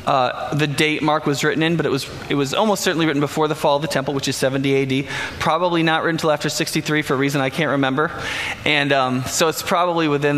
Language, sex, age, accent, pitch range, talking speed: English, male, 20-39, American, 135-165 Hz, 250 wpm